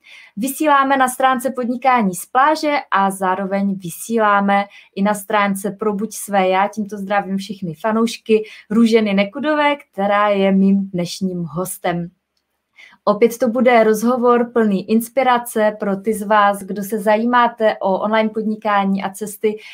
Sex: female